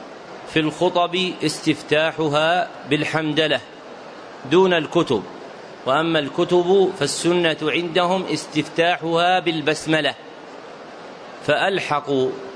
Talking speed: 60 wpm